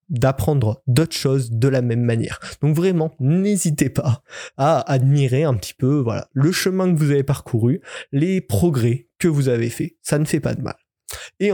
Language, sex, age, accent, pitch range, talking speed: French, male, 20-39, French, 135-165 Hz, 185 wpm